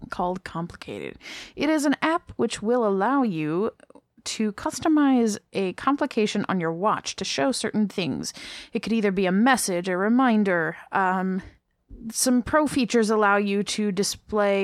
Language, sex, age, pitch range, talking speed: English, female, 20-39, 180-230 Hz, 150 wpm